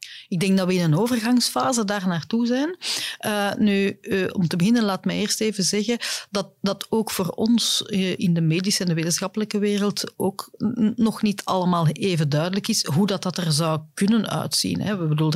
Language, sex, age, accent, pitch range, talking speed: Dutch, female, 40-59, Dutch, 160-200 Hz, 205 wpm